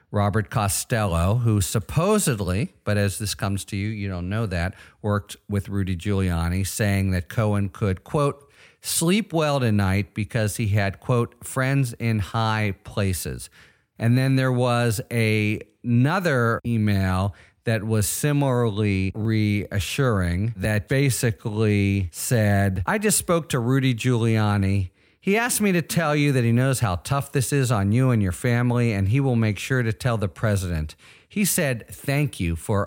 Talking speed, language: 155 wpm, English